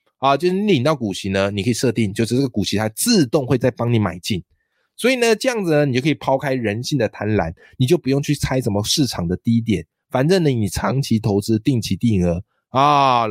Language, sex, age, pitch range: Chinese, male, 20-39, 95-135 Hz